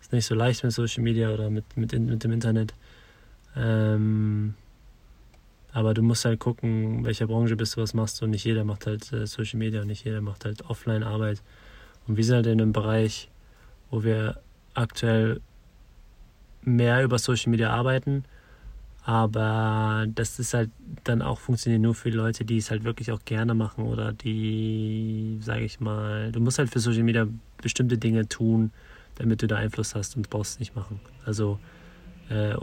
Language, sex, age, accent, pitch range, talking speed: German, male, 20-39, German, 110-120 Hz, 175 wpm